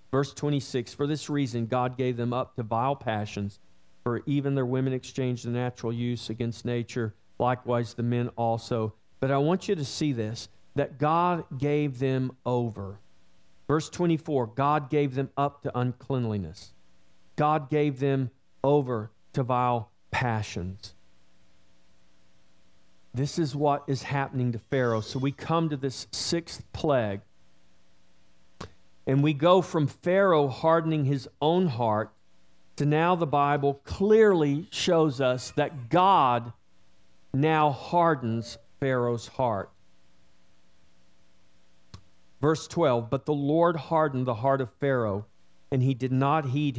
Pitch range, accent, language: 110-145 Hz, American, English